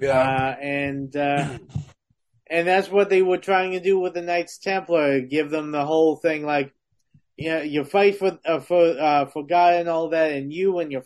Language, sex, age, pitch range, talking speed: English, male, 30-49, 140-180 Hz, 215 wpm